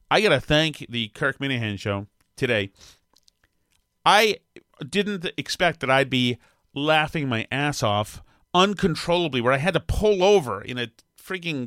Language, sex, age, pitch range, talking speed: English, male, 40-59, 115-165 Hz, 150 wpm